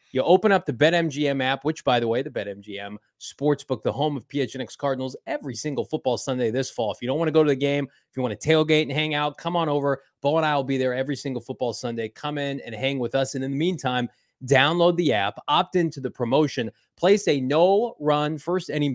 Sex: male